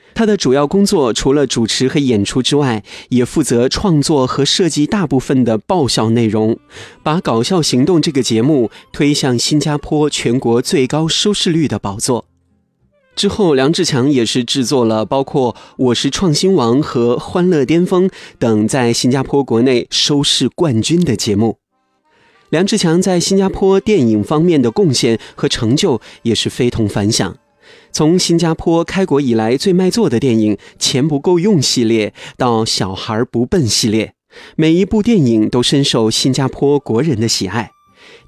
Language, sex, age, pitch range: Chinese, male, 30-49, 115-170 Hz